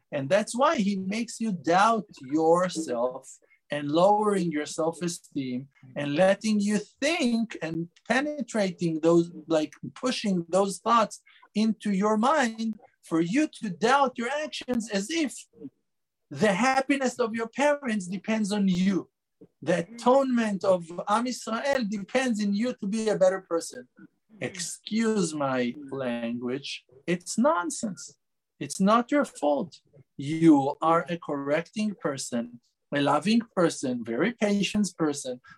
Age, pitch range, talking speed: 50-69, 160-225 Hz, 125 wpm